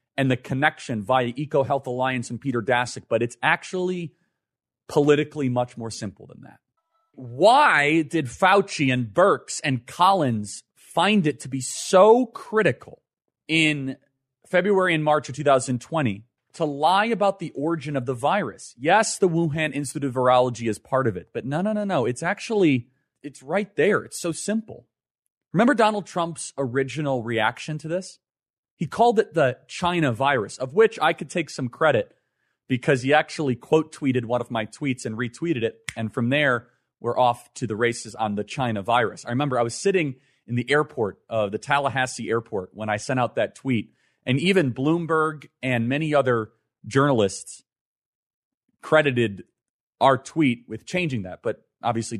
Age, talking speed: 30-49, 165 wpm